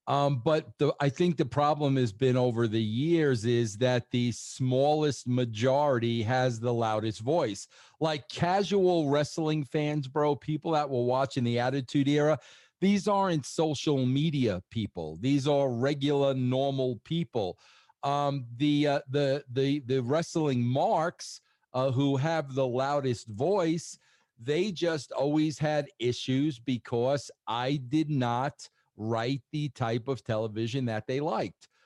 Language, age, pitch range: English, 50-69, 125-155 Hz